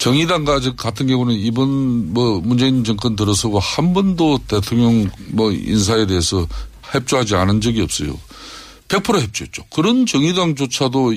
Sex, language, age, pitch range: male, Korean, 50-69, 95-135 Hz